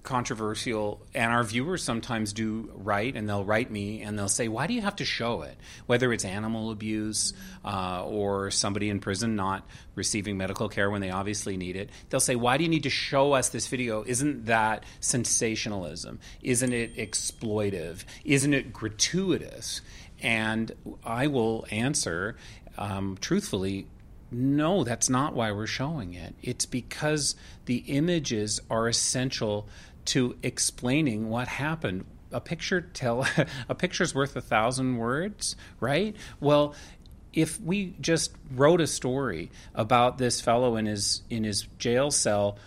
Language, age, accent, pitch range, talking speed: English, 30-49, American, 105-130 Hz, 150 wpm